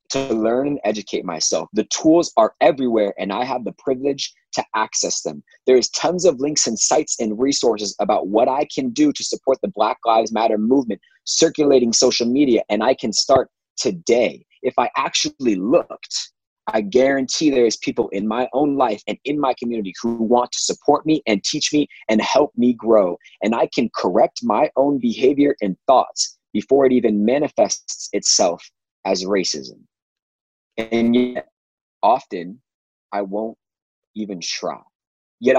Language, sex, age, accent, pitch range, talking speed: English, male, 30-49, American, 105-145 Hz, 165 wpm